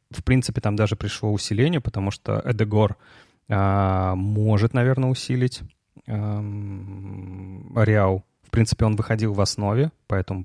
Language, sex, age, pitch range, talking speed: Russian, male, 20-39, 95-125 Hz, 125 wpm